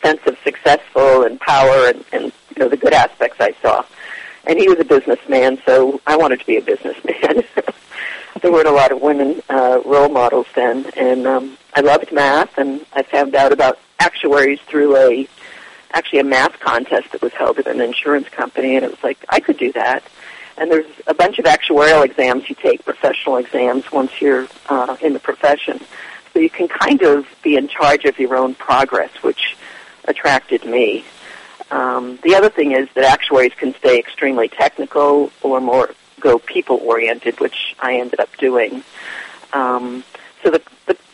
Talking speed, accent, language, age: 180 wpm, American, English, 50-69